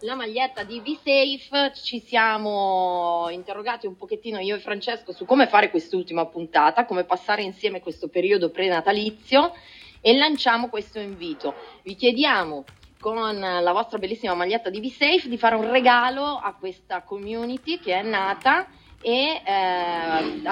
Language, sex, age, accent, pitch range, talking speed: Italian, female, 30-49, native, 185-260 Hz, 140 wpm